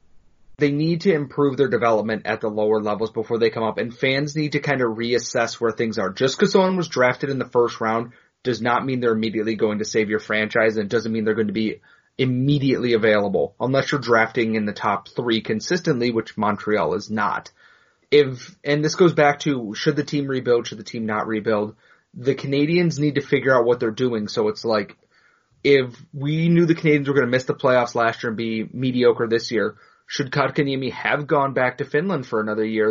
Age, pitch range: 30-49, 110-145 Hz